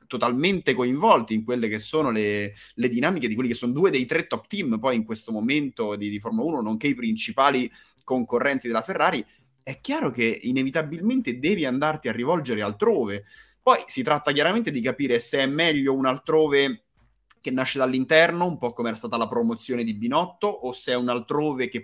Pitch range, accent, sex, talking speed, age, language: 115-165 Hz, native, male, 190 wpm, 30-49, Italian